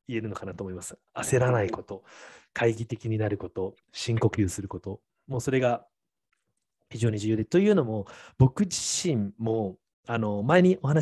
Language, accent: Japanese, native